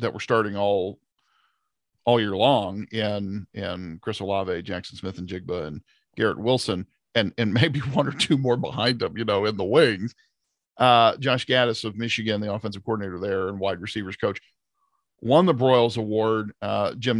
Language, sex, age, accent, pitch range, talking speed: English, male, 40-59, American, 100-120 Hz, 180 wpm